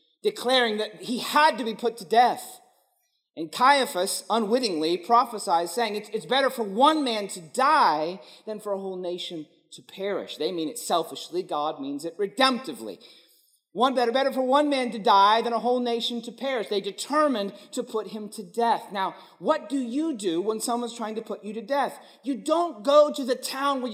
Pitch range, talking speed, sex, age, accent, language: 190-270 Hz, 195 wpm, male, 40-59, American, English